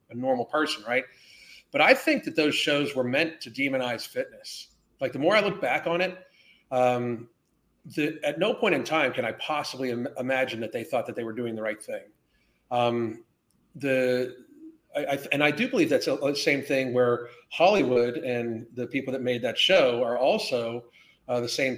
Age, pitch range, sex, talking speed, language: 40-59, 125-170 Hz, male, 190 wpm, English